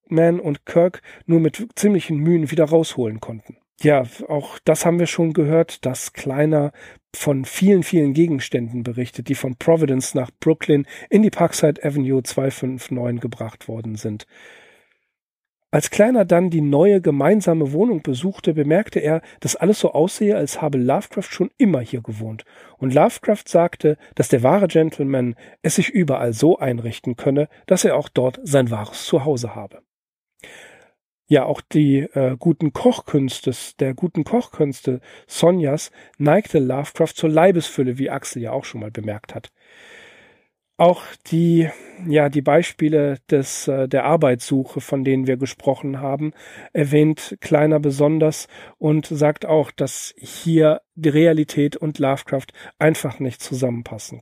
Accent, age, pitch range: German, 40-59, 130-165 Hz